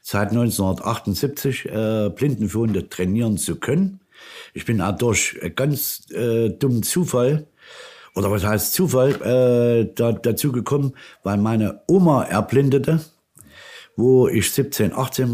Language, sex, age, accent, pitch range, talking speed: German, male, 60-79, German, 100-130 Hz, 120 wpm